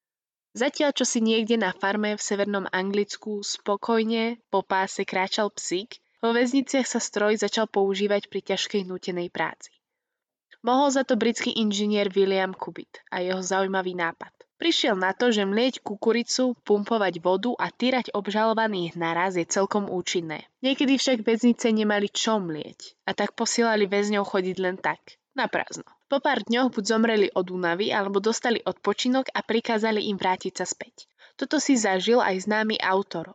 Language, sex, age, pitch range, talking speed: Slovak, female, 20-39, 190-235 Hz, 155 wpm